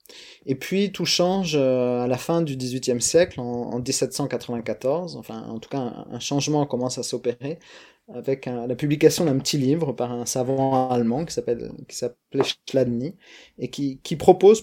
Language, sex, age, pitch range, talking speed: French, male, 30-49, 120-155 Hz, 165 wpm